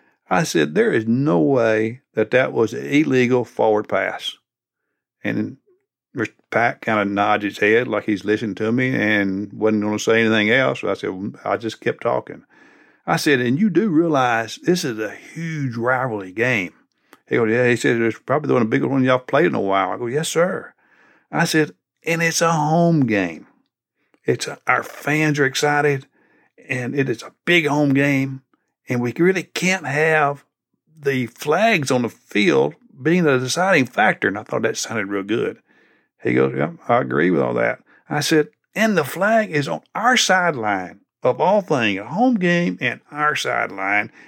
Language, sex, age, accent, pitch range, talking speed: English, male, 60-79, American, 110-165 Hz, 190 wpm